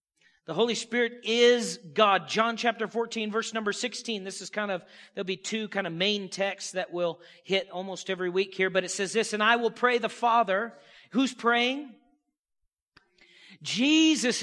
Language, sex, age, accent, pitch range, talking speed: English, male, 40-59, American, 200-260 Hz, 175 wpm